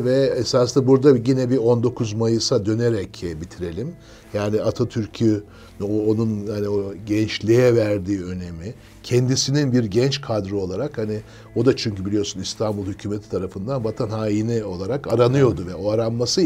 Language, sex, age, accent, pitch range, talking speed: Turkish, male, 60-79, native, 100-120 Hz, 135 wpm